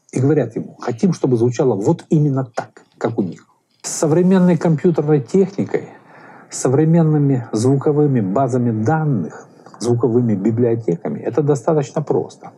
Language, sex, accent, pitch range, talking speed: Russian, male, native, 120-160 Hz, 125 wpm